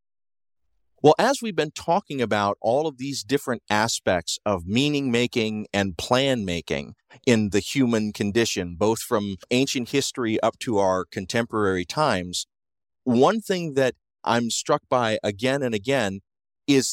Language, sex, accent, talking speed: English, male, American, 135 wpm